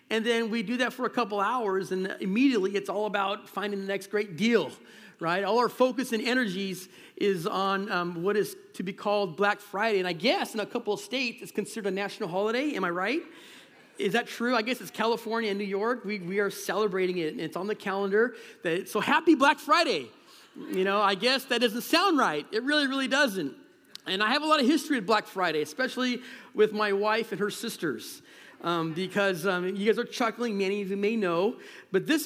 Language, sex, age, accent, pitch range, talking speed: English, male, 40-59, American, 180-230 Hz, 220 wpm